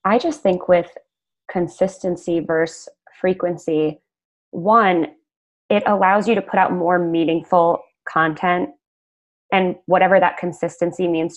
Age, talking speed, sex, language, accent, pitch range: 20-39, 115 wpm, female, English, American, 165-190 Hz